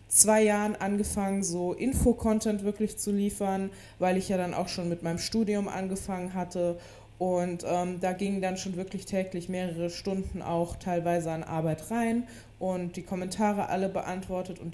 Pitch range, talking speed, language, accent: 175-200 Hz, 165 wpm, German, German